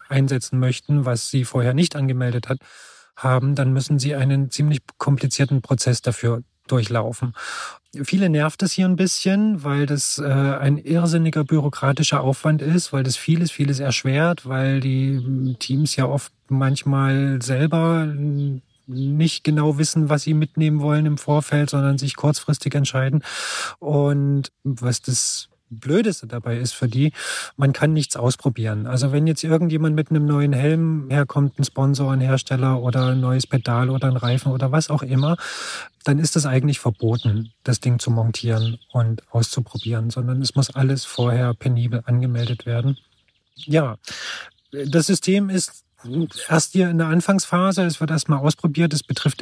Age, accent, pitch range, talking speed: 40-59, German, 125-150 Hz, 155 wpm